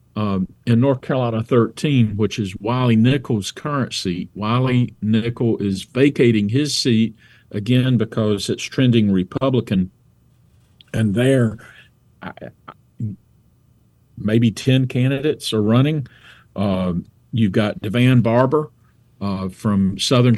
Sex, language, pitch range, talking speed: male, English, 105-125 Hz, 115 wpm